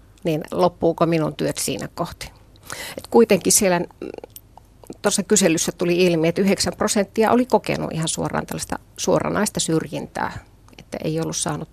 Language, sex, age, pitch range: Finnish, female, 30-49, 155-205 Hz